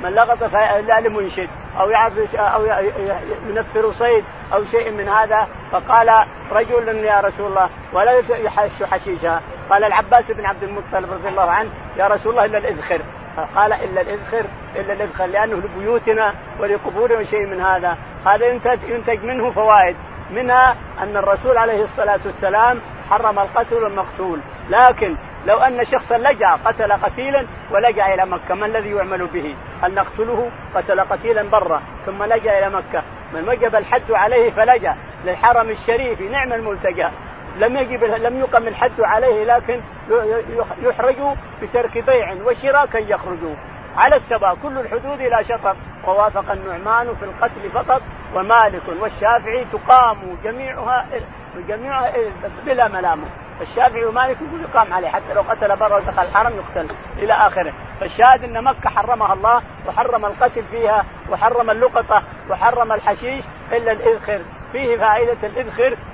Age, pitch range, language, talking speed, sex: 50-69, 200-250 Hz, Arabic, 135 wpm, male